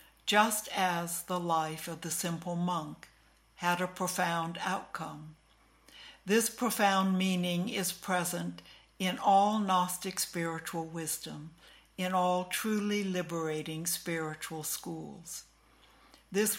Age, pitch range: 60-79, 165-190 Hz